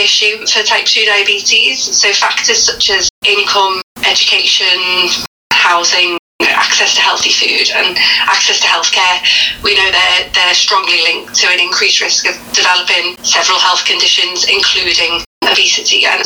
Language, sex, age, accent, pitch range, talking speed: English, female, 30-49, British, 185-225 Hz, 140 wpm